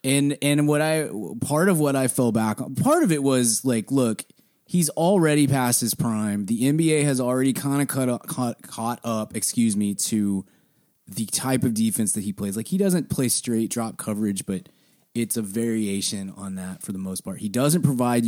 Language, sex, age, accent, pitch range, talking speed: English, male, 20-39, American, 105-145 Hz, 200 wpm